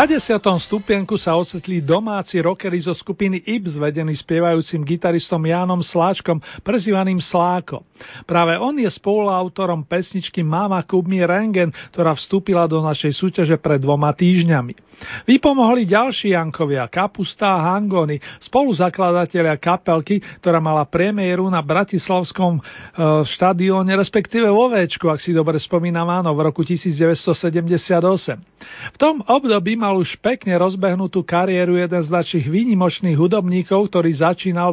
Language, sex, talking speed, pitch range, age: Slovak, male, 120 wpm, 165-195 Hz, 40-59